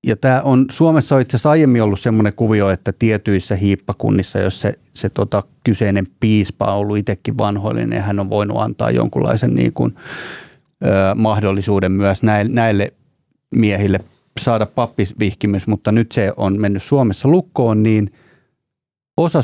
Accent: native